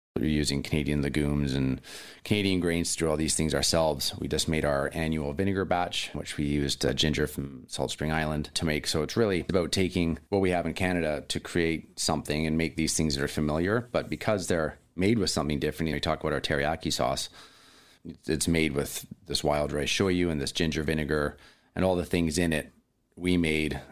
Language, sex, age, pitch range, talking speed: English, male, 30-49, 70-85 Hz, 210 wpm